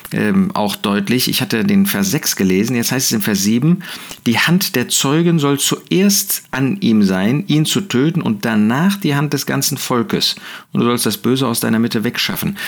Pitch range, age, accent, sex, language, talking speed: 125-200 Hz, 50-69, German, male, German, 205 wpm